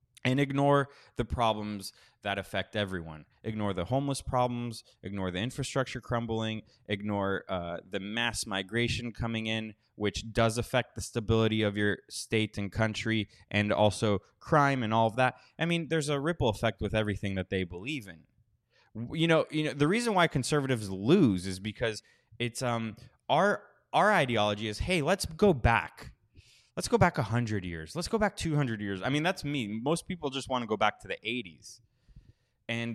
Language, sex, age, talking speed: English, male, 20-39, 175 wpm